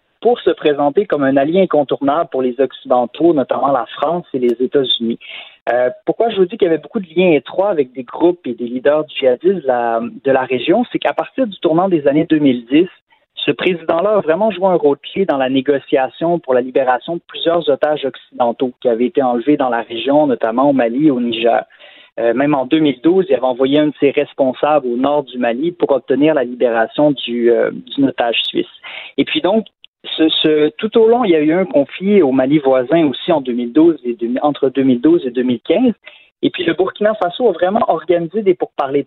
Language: French